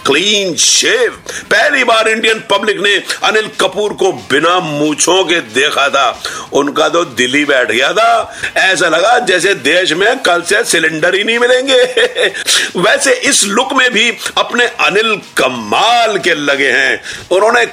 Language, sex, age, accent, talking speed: Hindi, male, 50-69, native, 145 wpm